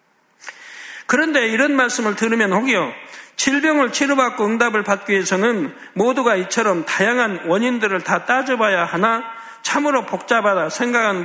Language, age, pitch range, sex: Korean, 50-69, 205-260 Hz, male